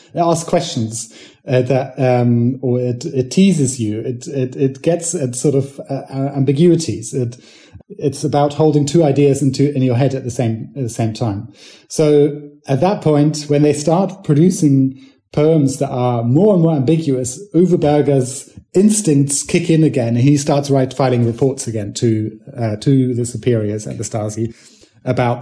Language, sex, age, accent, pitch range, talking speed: English, male, 30-49, British, 125-145 Hz, 170 wpm